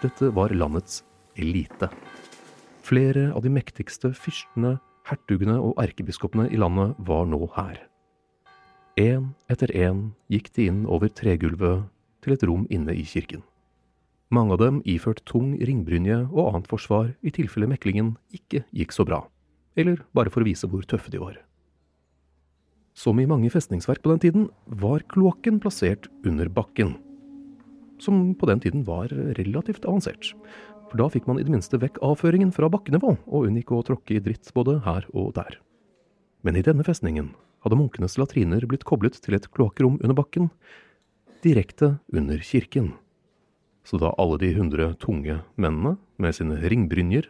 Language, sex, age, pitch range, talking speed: English, male, 40-59, 95-145 Hz, 155 wpm